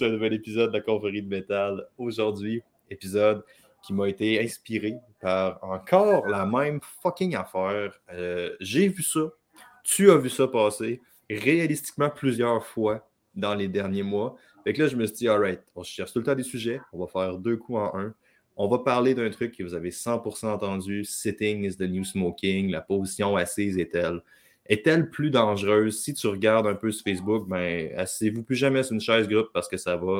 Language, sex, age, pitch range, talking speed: French, male, 20-39, 95-120 Hz, 210 wpm